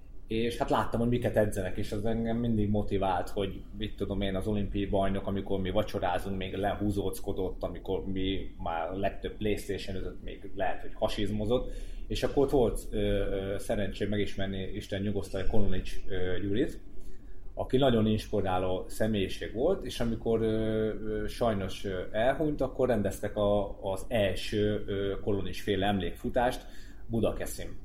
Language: Hungarian